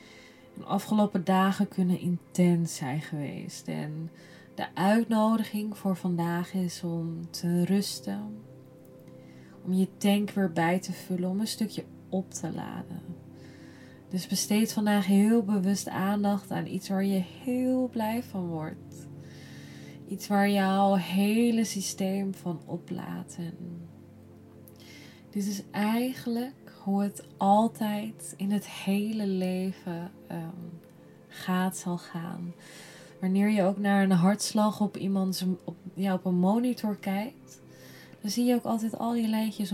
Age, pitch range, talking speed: 20-39, 175-205 Hz, 130 wpm